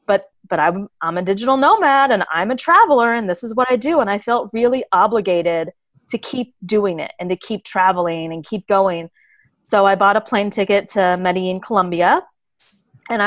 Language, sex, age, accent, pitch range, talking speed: English, female, 30-49, American, 180-220 Hz, 195 wpm